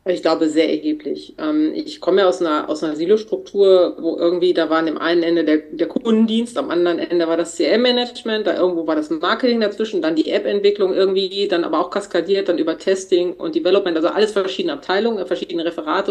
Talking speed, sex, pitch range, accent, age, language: 200 wpm, female, 175-220 Hz, German, 30-49, German